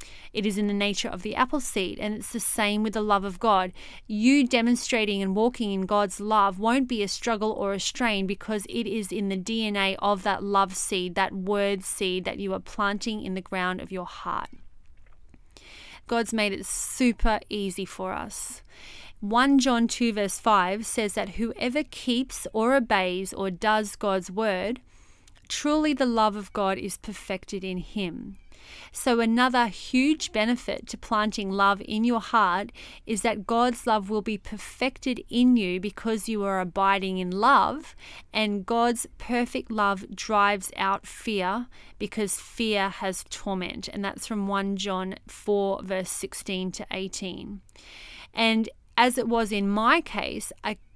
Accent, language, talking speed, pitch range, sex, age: Australian, English, 165 wpm, 195-230 Hz, female, 30-49